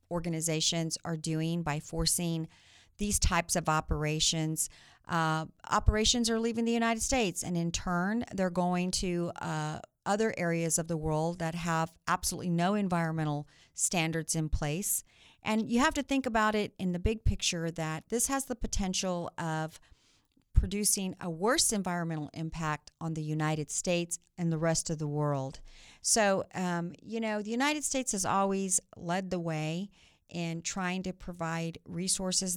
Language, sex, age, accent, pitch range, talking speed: English, female, 50-69, American, 155-185 Hz, 155 wpm